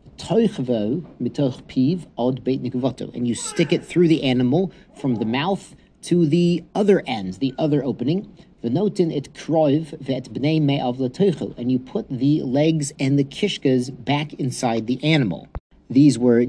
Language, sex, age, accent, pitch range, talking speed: English, male, 40-59, American, 120-155 Hz, 115 wpm